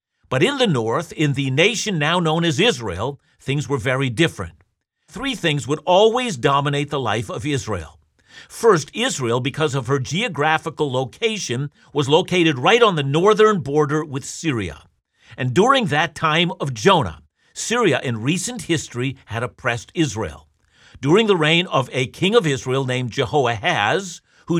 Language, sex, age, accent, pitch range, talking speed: English, male, 50-69, American, 130-175 Hz, 155 wpm